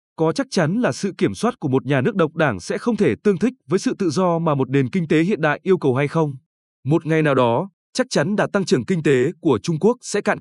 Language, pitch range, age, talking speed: Vietnamese, 145-200 Hz, 20-39, 285 wpm